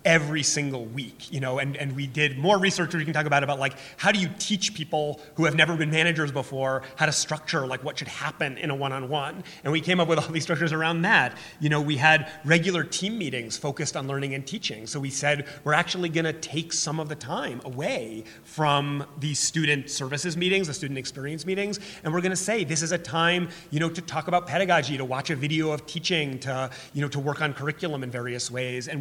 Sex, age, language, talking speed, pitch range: male, 30-49, English, 240 wpm, 135-165 Hz